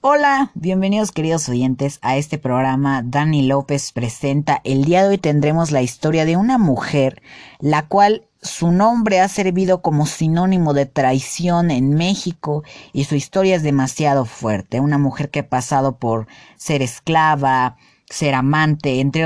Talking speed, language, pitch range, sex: 155 wpm, Spanish, 130-175 Hz, female